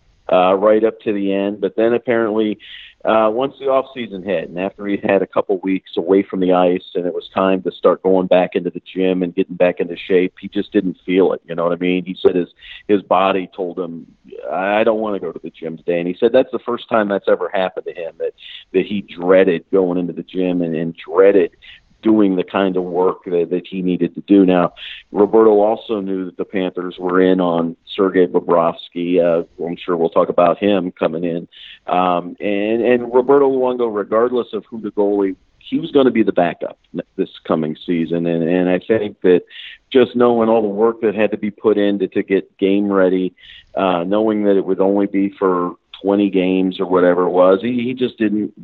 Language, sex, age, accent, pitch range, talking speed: German, male, 40-59, American, 90-110 Hz, 225 wpm